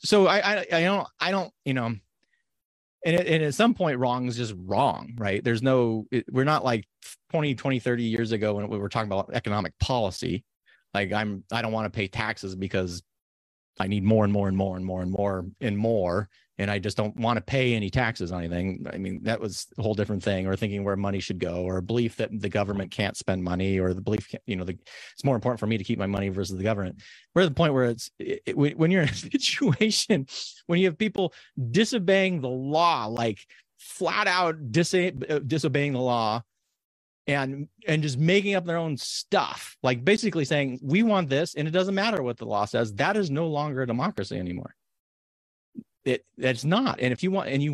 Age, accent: 30-49, American